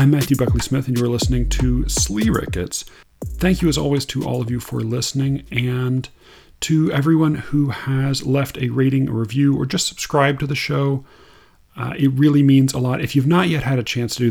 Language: English